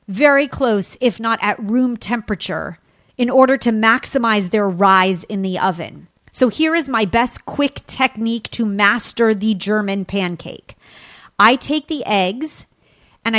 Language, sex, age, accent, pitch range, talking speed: English, female, 40-59, American, 195-235 Hz, 150 wpm